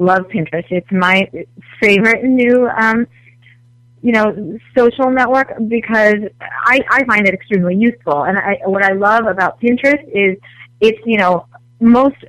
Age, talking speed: 30-49, 145 wpm